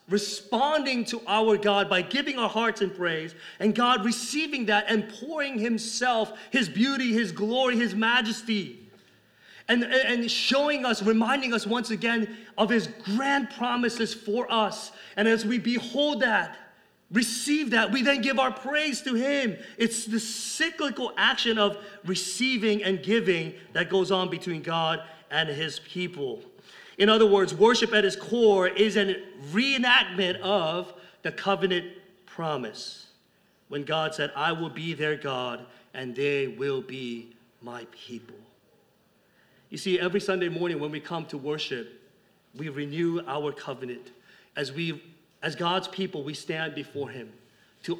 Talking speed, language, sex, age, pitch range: 150 wpm, English, male, 30-49, 160-230 Hz